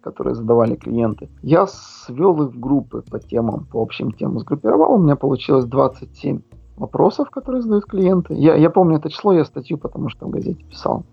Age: 40-59